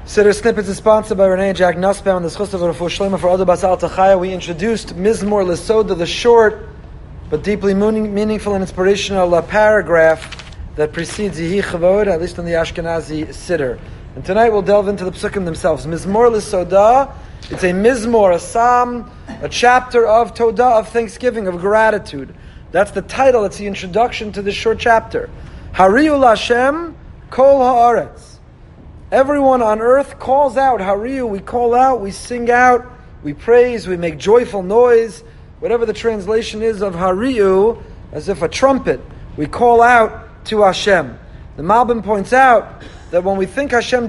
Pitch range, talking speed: 190-240 Hz, 160 wpm